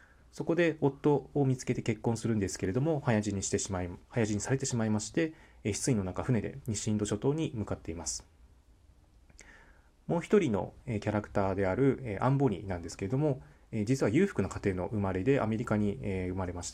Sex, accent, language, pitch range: male, native, Japanese, 90-125 Hz